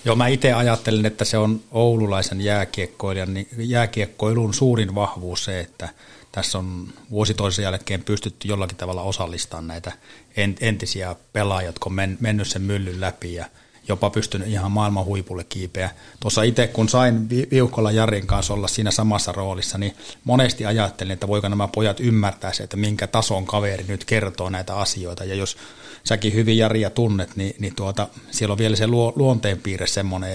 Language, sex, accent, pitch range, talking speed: Finnish, male, native, 95-110 Hz, 160 wpm